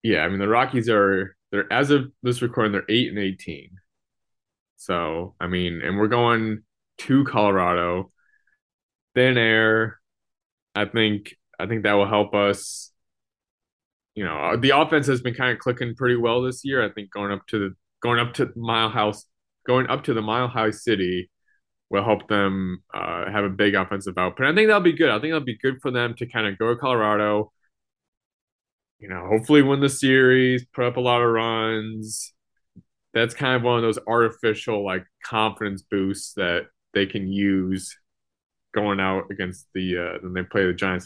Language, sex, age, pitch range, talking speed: English, male, 20-39, 95-120 Hz, 185 wpm